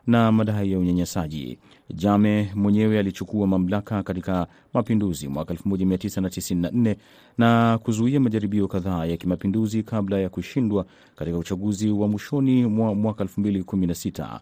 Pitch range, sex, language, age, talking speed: 95-110 Hz, male, Swahili, 40-59, 115 wpm